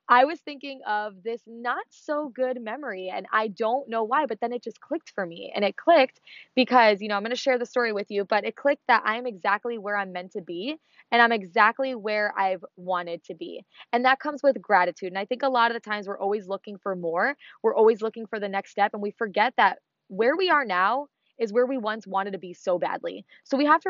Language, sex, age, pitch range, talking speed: English, female, 20-39, 195-240 Hz, 250 wpm